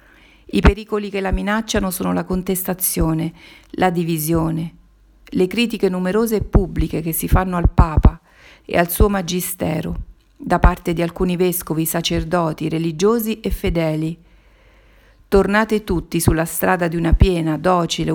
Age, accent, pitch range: 50-69, native, 165-190 Hz